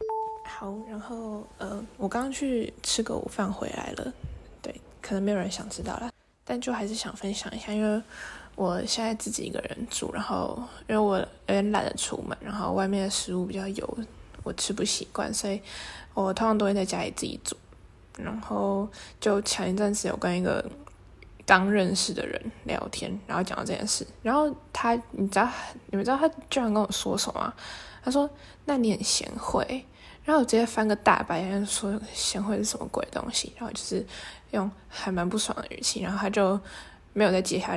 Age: 20-39